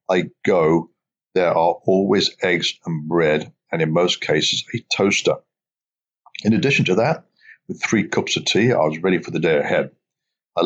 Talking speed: 175 wpm